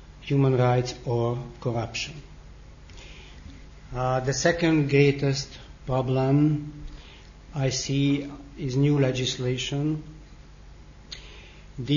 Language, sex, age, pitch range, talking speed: English, male, 60-79, 120-140 Hz, 75 wpm